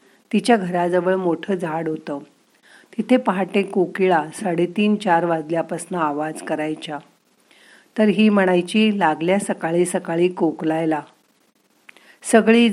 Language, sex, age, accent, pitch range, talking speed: Marathi, female, 50-69, native, 160-205 Hz, 100 wpm